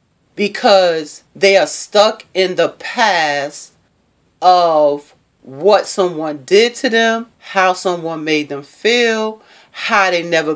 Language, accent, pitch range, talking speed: English, American, 170-235 Hz, 120 wpm